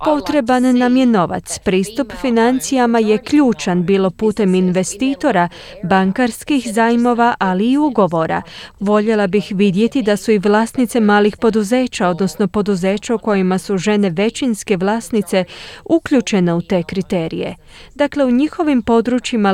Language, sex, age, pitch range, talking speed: Croatian, female, 20-39, 195-240 Hz, 120 wpm